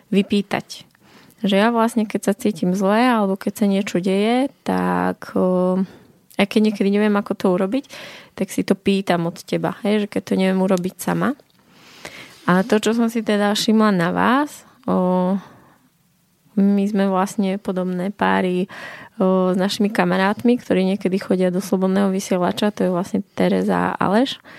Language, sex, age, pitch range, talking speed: Slovak, female, 20-39, 185-215 Hz, 155 wpm